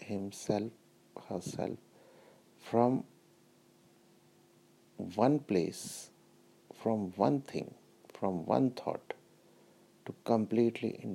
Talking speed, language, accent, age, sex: 75 wpm, English, Indian, 60-79, male